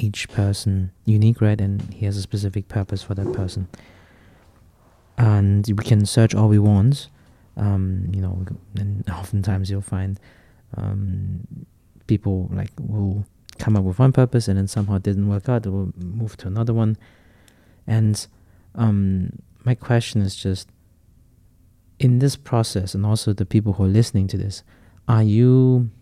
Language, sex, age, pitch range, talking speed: English, male, 20-39, 95-110 Hz, 155 wpm